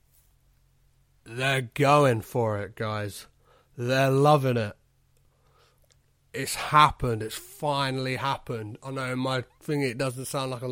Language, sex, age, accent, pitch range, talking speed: English, male, 30-49, British, 120-140 Hz, 125 wpm